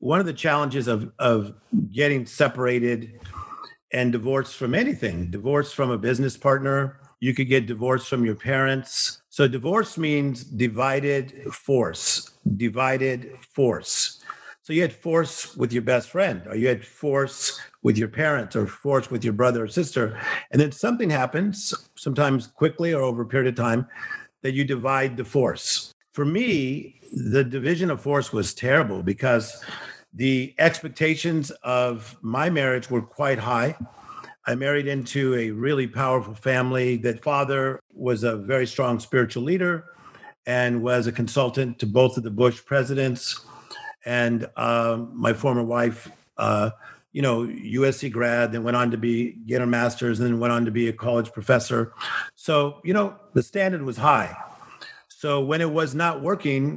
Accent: American